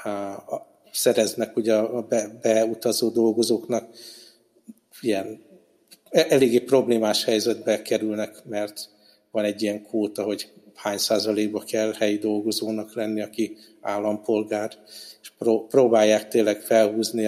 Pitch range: 110-120 Hz